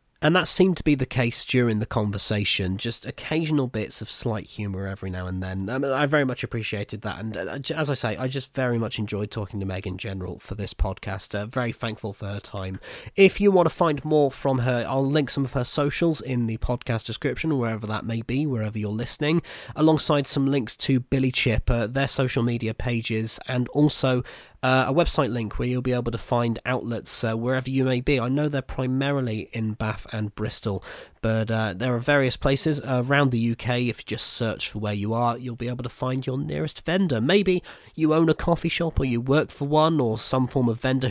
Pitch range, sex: 110-135 Hz, male